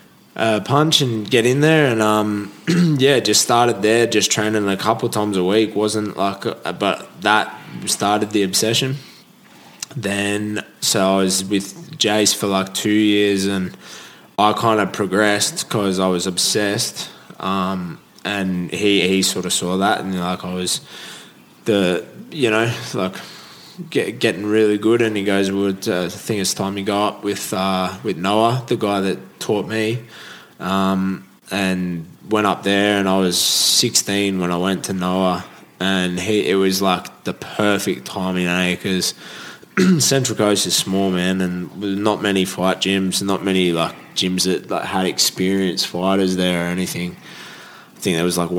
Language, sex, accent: English, male, Australian